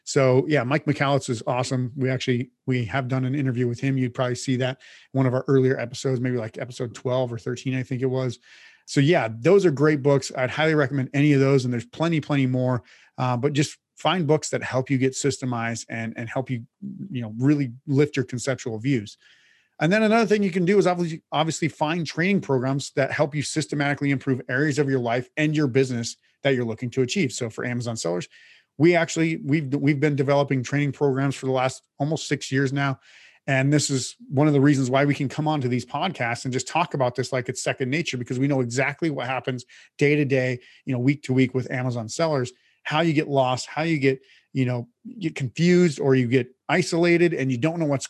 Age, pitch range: 30-49, 130-150 Hz